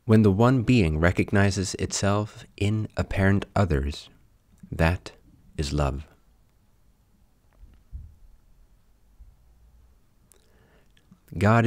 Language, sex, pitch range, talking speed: English, male, 80-105 Hz, 65 wpm